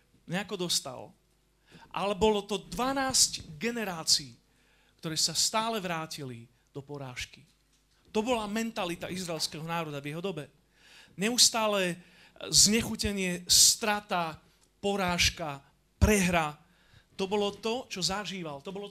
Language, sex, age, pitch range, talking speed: Slovak, male, 40-59, 145-205 Hz, 105 wpm